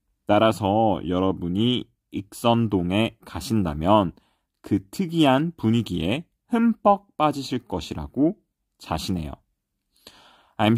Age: 30-49